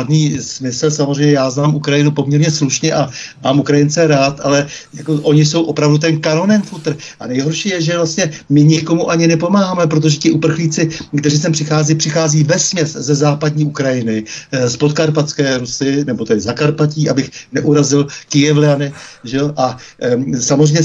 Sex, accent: male, native